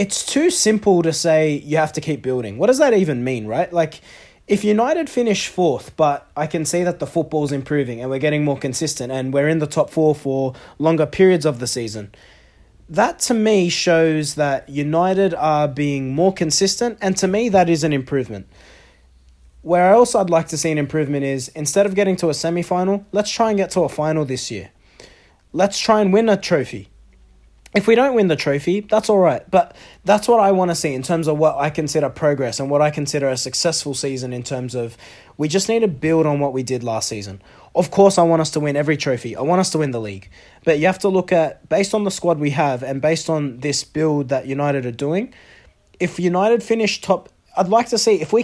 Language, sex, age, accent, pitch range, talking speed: English, male, 20-39, Australian, 140-190 Hz, 230 wpm